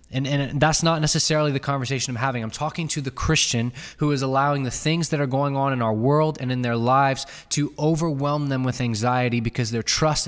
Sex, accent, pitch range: male, American, 115-150 Hz